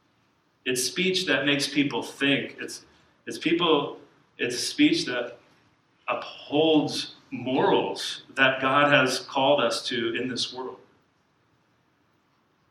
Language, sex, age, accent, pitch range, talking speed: English, male, 40-59, American, 125-150 Hz, 110 wpm